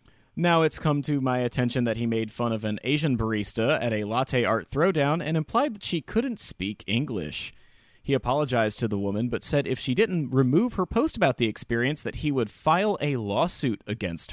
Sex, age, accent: male, 30-49, American